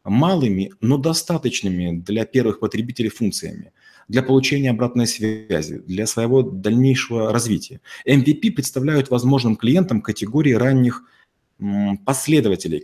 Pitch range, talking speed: 110-135 Hz, 105 wpm